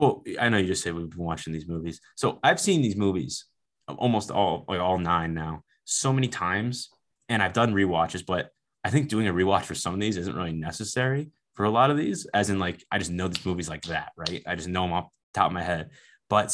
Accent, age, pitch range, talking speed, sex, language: American, 20-39, 90-115 Hz, 250 wpm, male, English